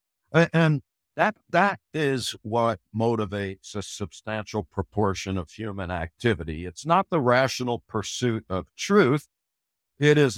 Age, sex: 60-79, male